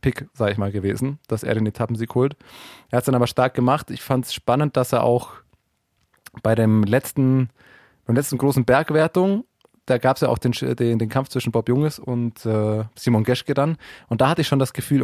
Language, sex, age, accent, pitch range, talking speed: German, male, 20-39, German, 120-135 Hz, 220 wpm